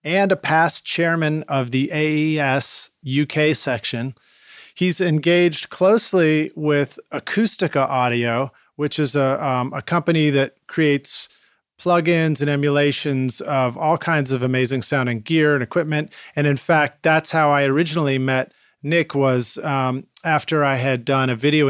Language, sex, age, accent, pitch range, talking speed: English, male, 40-59, American, 130-160 Hz, 145 wpm